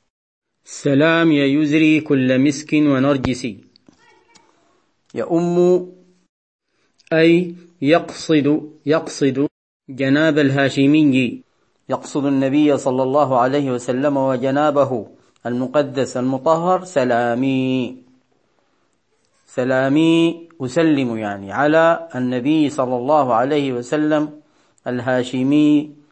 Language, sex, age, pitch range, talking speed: Arabic, male, 40-59, 135-165 Hz, 75 wpm